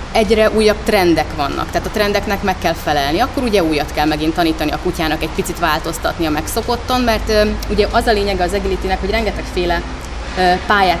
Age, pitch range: 30-49, 165-215 Hz